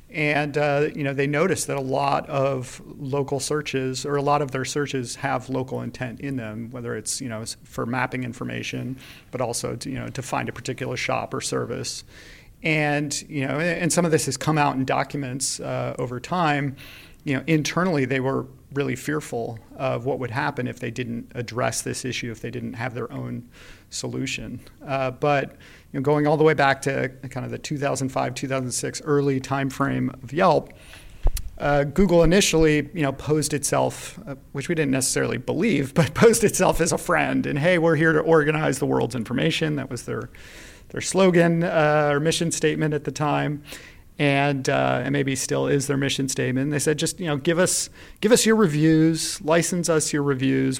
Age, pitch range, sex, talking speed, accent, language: 40-59, 130-155 Hz, male, 195 wpm, American, English